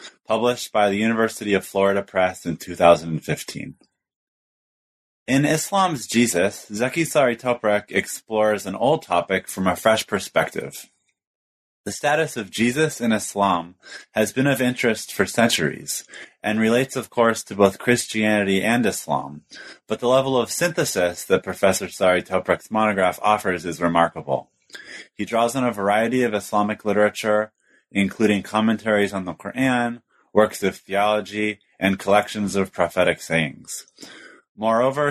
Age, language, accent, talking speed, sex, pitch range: 30-49, English, American, 135 wpm, male, 95-115 Hz